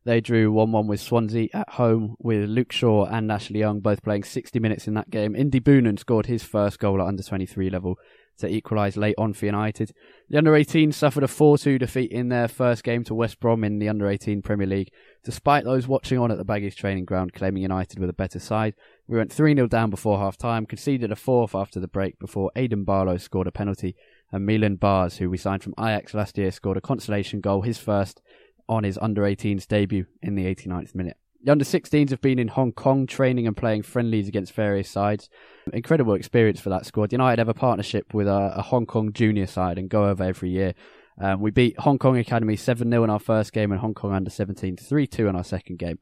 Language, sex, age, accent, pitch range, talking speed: English, male, 20-39, British, 100-120 Hz, 215 wpm